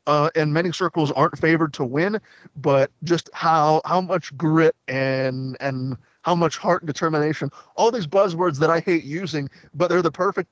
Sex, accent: male, American